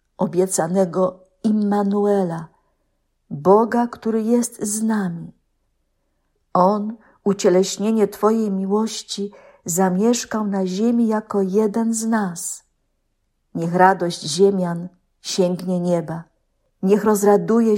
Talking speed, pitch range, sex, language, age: 85 wpm, 185-220 Hz, female, Polish, 50-69